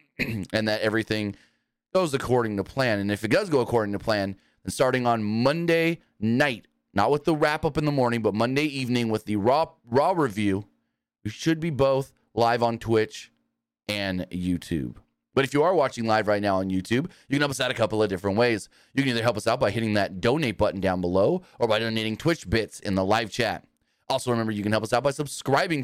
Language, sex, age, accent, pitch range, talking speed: English, male, 30-49, American, 105-135 Hz, 220 wpm